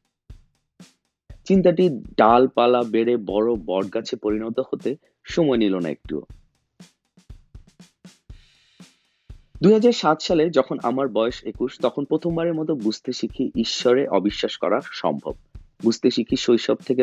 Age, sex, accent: 30-49, male, native